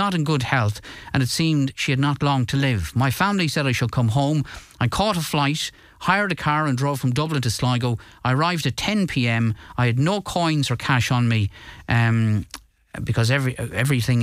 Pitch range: 110-140 Hz